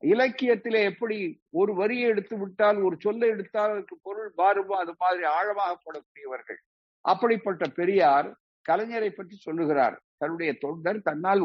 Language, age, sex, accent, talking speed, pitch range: Tamil, 50-69, male, native, 110 wpm, 180-245 Hz